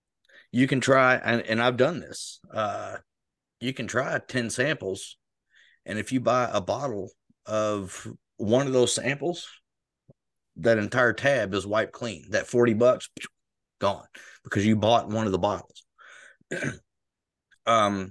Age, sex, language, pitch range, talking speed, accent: 30-49, male, English, 105-130 Hz, 145 wpm, American